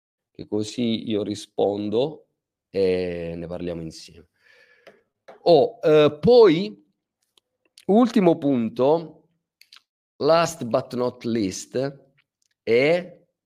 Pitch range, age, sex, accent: 100-145 Hz, 40-59, male, native